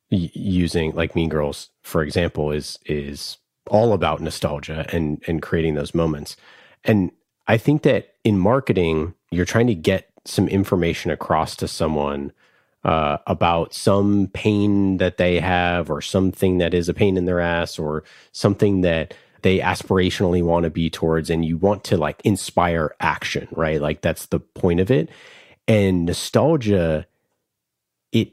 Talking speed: 155 wpm